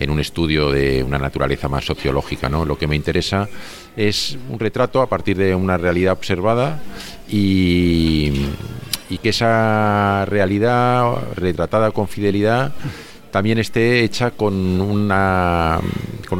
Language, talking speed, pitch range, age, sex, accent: Spanish, 130 wpm, 75-105 Hz, 50-69, male, Spanish